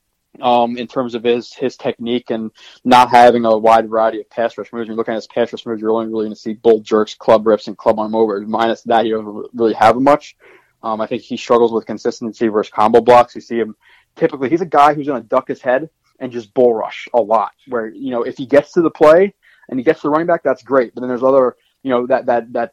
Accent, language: American, English